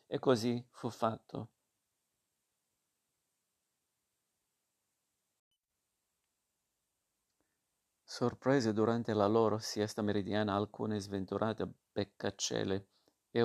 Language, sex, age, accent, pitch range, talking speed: Italian, male, 50-69, native, 105-120 Hz, 60 wpm